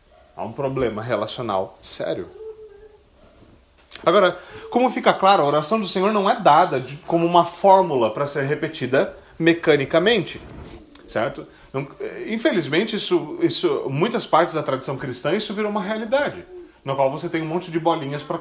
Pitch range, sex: 150-210 Hz, male